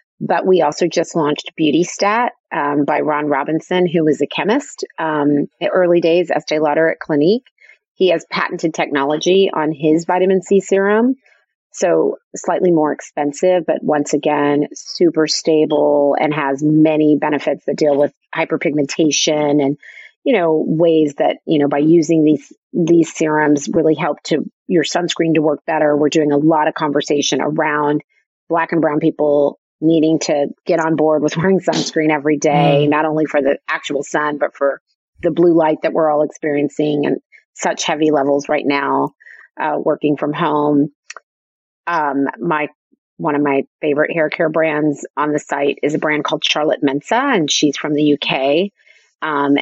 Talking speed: 165 wpm